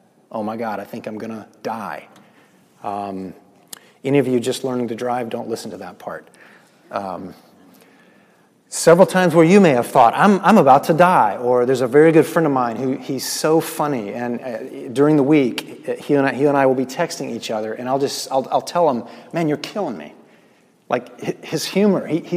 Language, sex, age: English, male, 30-49